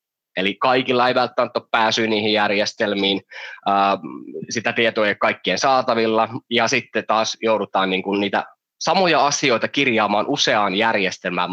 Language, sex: Finnish, male